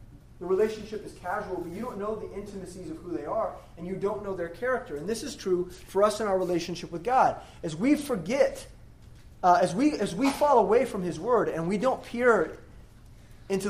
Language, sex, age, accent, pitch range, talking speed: English, male, 20-39, American, 185-260 Hz, 215 wpm